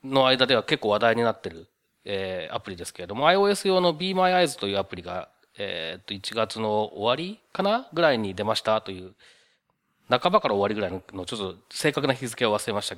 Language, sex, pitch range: Japanese, male, 115-175 Hz